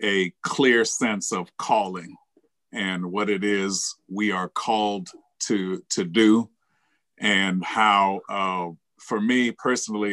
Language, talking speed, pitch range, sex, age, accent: English, 125 wpm, 95-105 Hz, male, 50-69, American